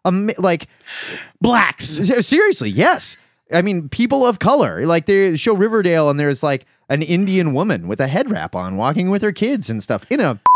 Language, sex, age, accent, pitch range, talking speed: English, male, 30-49, American, 125-185 Hz, 180 wpm